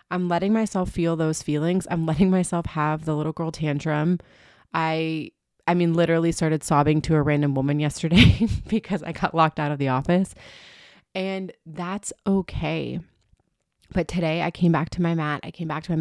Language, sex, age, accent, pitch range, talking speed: English, female, 30-49, American, 150-185 Hz, 185 wpm